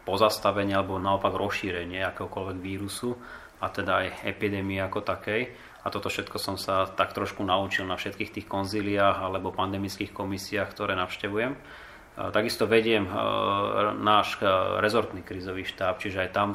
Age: 30-49